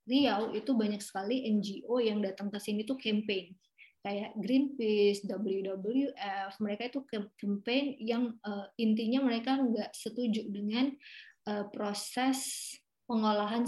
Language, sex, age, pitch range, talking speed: Indonesian, female, 20-39, 205-250 Hz, 110 wpm